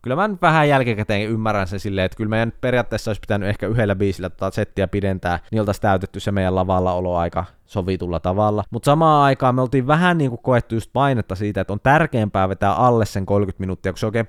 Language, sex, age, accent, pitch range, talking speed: Finnish, male, 20-39, native, 95-135 Hz, 215 wpm